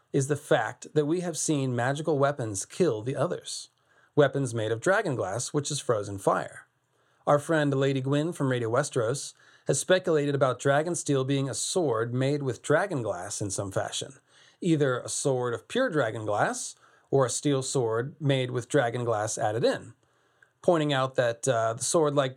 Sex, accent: male, American